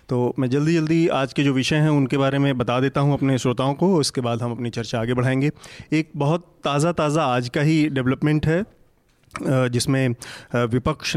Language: Hindi